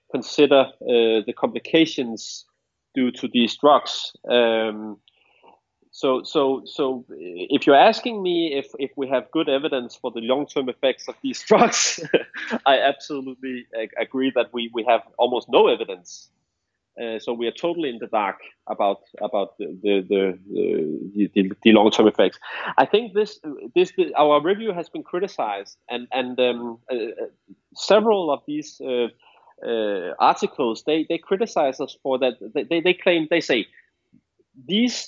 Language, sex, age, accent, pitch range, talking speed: English, male, 30-49, Danish, 125-215 Hz, 155 wpm